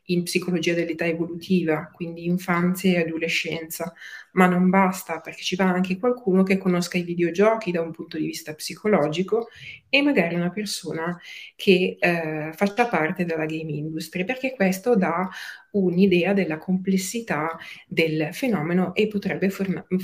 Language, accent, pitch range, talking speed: Italian, native, 160-185 Hz, 145 wpm